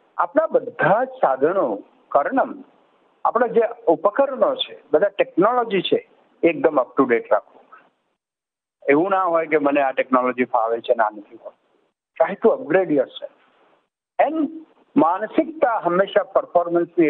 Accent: native